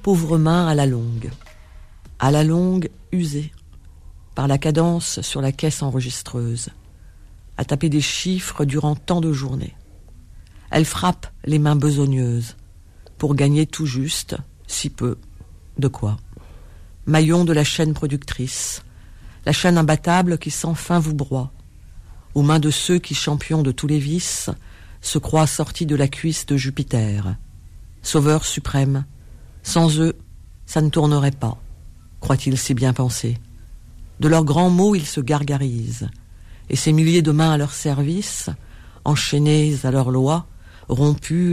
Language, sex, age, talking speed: French, female, 50-69, 145 wpm